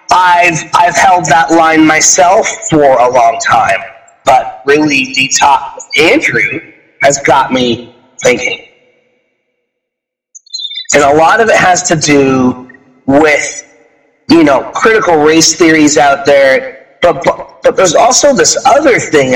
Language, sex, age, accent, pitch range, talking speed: English, male, 30-49, American, 145-215 Hz, 135 wpm